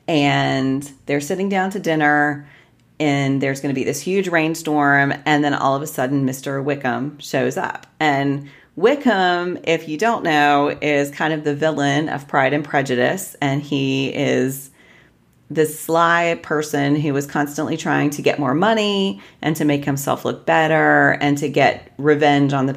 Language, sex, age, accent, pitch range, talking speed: English, female, 30-49, American, 135-155 Hz, 170 wpm